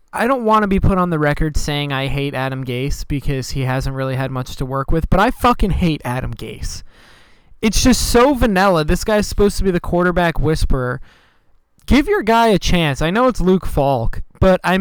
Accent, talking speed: American, 215 wpm